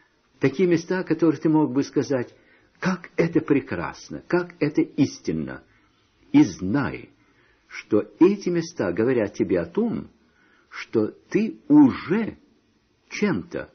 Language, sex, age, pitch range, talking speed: Russian, male, 60-79, 120-185 Hz, 115 wpm